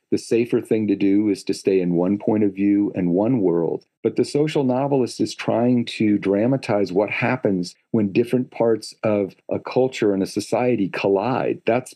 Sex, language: male, English